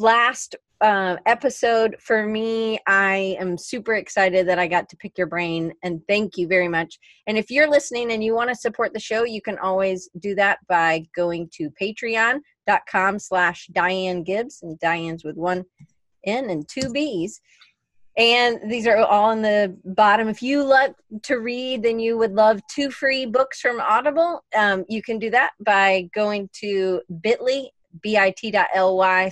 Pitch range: 180-235 Hz